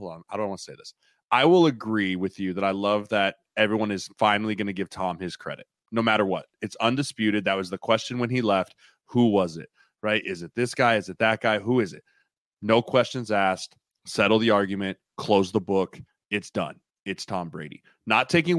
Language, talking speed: English, 225 wpm